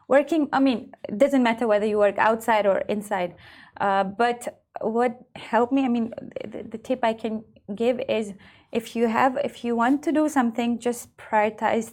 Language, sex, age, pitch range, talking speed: Arabic, female, 20-39, 210-245 Hz, 185 wpm